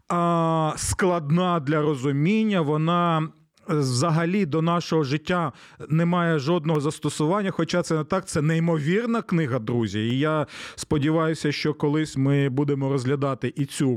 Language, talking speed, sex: Ukrainian, 130 wpm, male